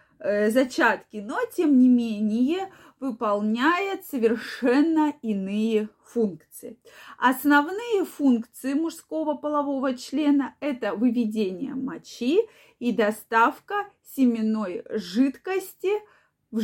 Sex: female